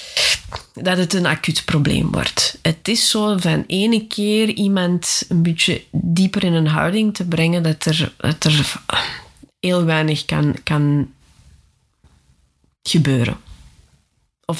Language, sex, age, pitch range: Dutch, female, 20-39, 155-185 Hz